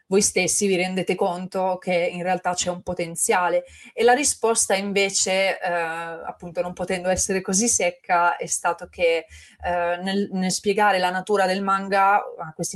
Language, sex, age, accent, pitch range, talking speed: Italian, female, 20-39, native, 170-200 Hz, 165 wpm